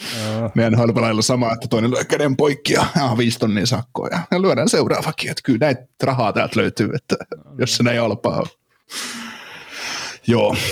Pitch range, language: 105-125 Hz, Finnish